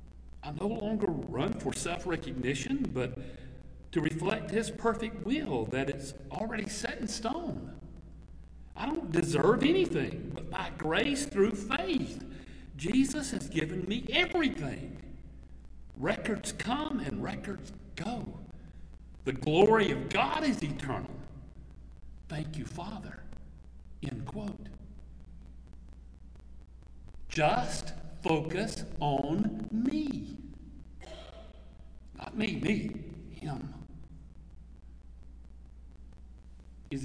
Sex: male